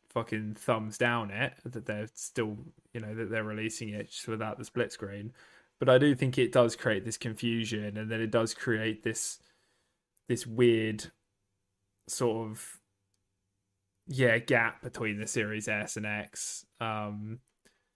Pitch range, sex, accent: 105-120 Hz, male, British